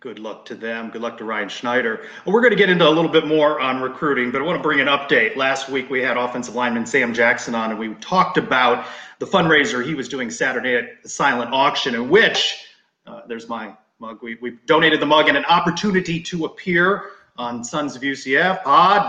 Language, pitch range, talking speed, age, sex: English, 125-190 Hz, 215 wpm, 30-49, male